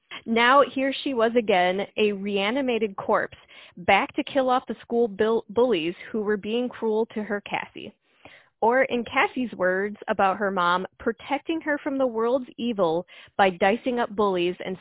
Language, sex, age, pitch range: English, female, 20-39, 195-230 Hz